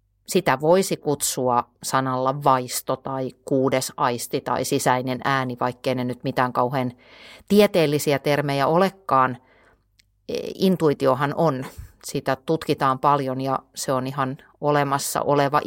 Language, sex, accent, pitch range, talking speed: Finnish, female, native, 125-160 Hz, 115 wpm